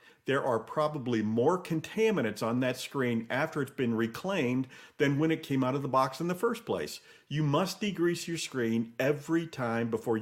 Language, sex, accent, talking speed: English, male, American, 190 wpm